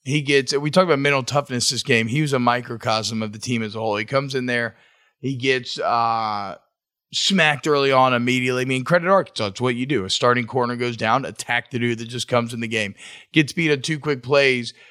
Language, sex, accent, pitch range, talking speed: English, male, American, 125-155 Hz, 235 wpm